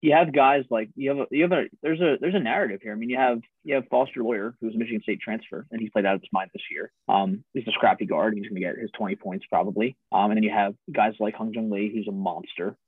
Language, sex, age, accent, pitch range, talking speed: English, male, 30-49, American, 100-140 Hz, 305 wpm